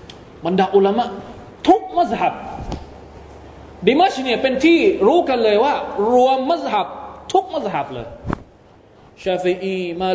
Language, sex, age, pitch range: Thai, male, 20-39, 180-265 Hz